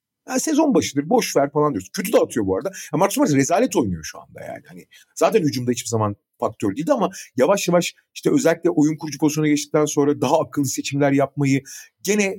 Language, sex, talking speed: Turkish, male, 190 wpm